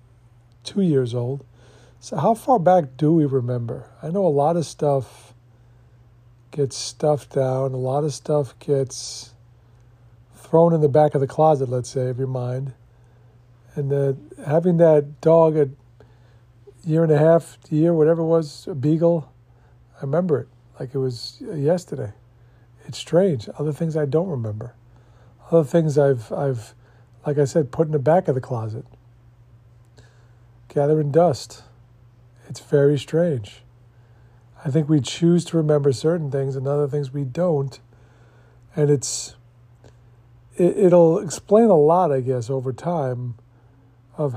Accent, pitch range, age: American, 120-155 Hz, 50-69